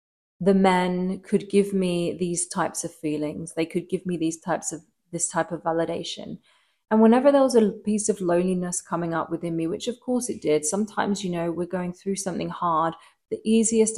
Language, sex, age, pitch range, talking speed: English, female, 20-39, 170-200 Hz, 200 wpm